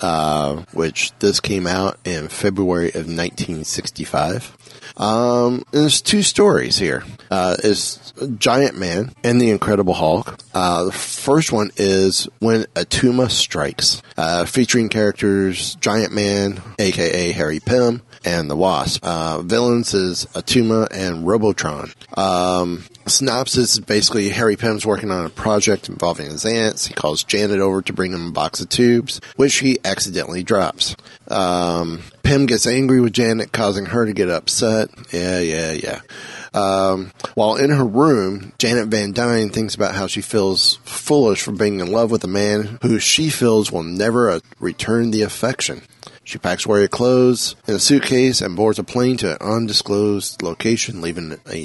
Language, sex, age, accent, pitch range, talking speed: English, male, 30-49, American, 90-120 Hz, 155 wpm